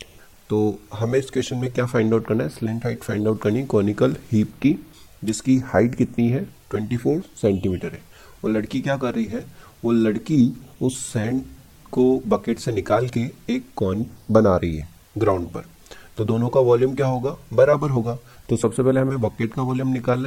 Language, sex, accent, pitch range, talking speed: Hindi, male, native, 100-125 Hz, 190 wpm